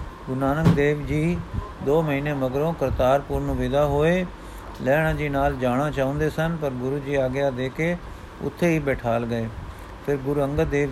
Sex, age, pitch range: male, 50-69, 130-155 Hz